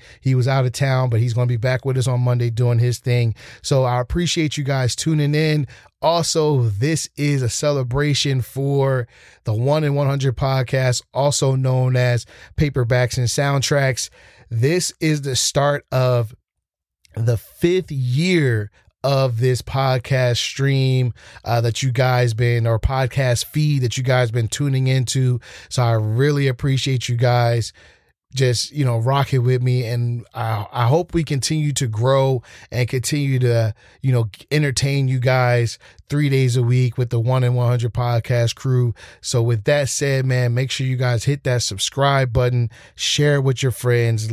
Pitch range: 120-140 Hz